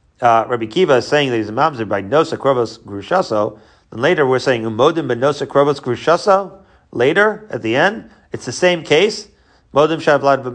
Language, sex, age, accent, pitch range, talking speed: English, male, 40-59, American, 130-185 Hz, 180 wpm